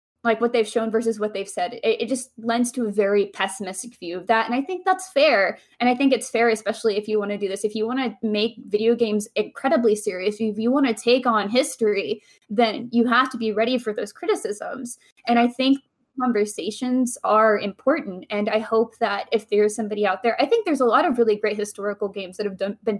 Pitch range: 210-245 Hz